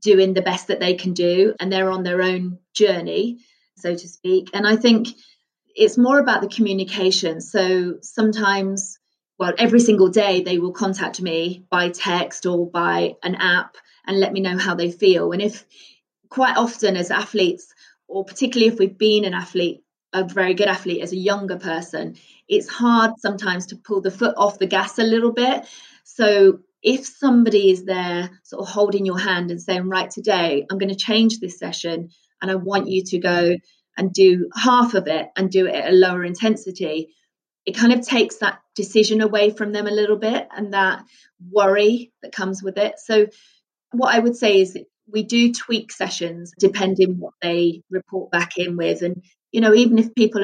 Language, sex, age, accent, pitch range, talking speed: English, female, 30-49, British, 185-215 Hz, 190 wpm